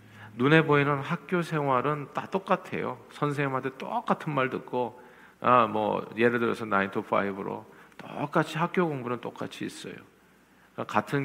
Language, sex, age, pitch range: Korean, male, 50-69, 105-140 Hz